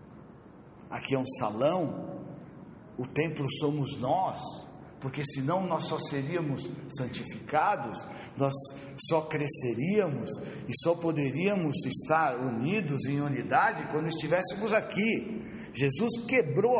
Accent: Brazilian